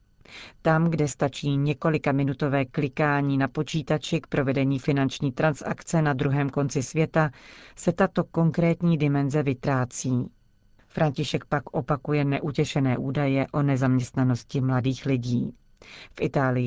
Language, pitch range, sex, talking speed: Czech, 130-155 Hz, female, 115 wpm